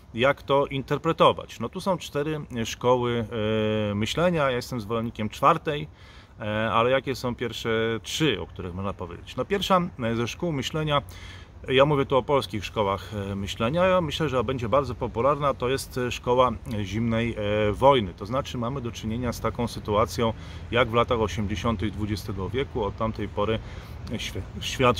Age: 30-49